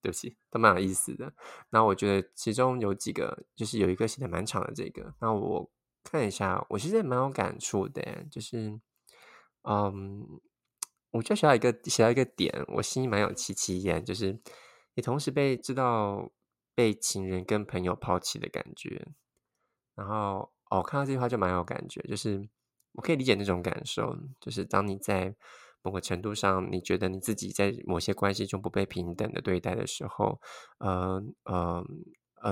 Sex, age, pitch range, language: male, 20-39, 95-125 Hz, Chinese